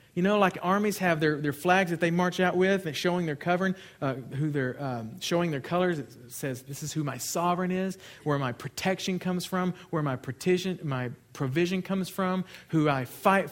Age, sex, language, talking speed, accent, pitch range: 40-59, male, English, 210 wpm, American, 125-175 Hz